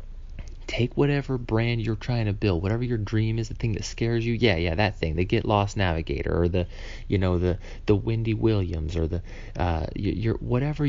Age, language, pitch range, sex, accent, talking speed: 30-49, English, 85-115 Hz, male, American, 205 wpm